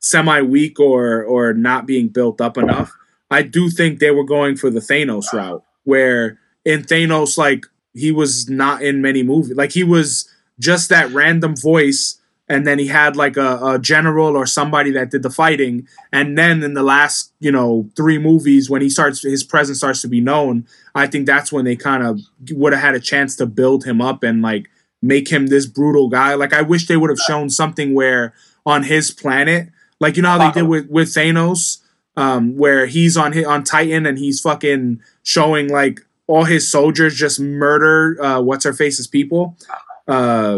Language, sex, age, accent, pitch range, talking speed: English, male, 20-39, American, 135-155 Hz, 195 wpm